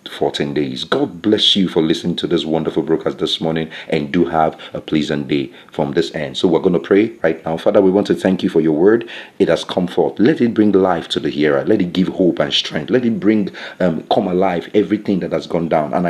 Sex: male